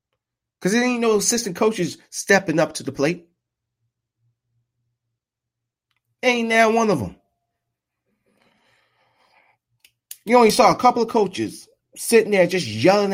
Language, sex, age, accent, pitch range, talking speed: English, male, 30-49, American, 115-175 Hz, 125 wpm